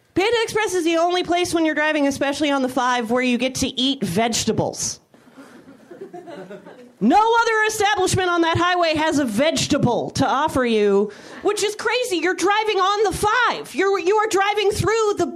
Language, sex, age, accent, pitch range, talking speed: English, female, 30-49, American, 225-345 Hz, 175 wpm